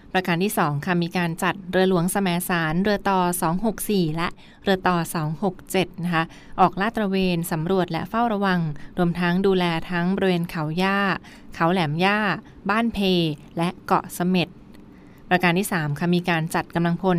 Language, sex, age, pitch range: Thai, female, 20-39, 170-195 Hz